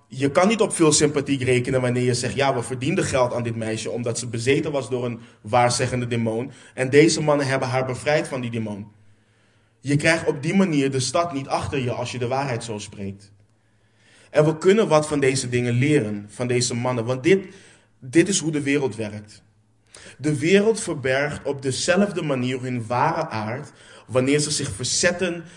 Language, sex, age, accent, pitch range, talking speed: Dutch, male, 20-39, Dutch, 110-150 Hz, 190 wpm